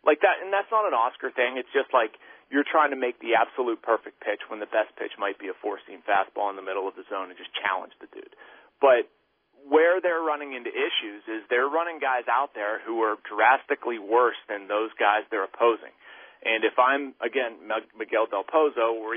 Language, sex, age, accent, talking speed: English, male, 40-59, American, 215 wpm